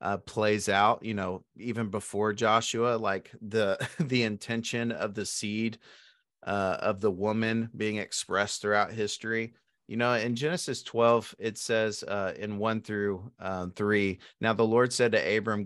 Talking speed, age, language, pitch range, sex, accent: 160 wpm, 30-49, English, 100-120 Hz, male, American